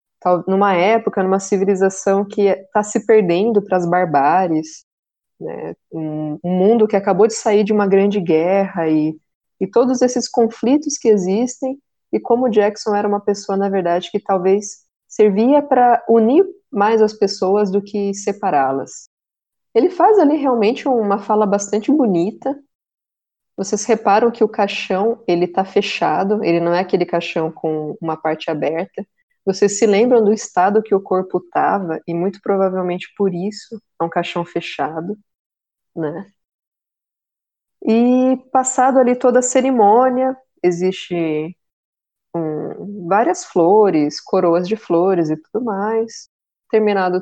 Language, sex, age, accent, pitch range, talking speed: Portuguese, female, 20-39, Brazilian, 180-235 Hz, 135 wpm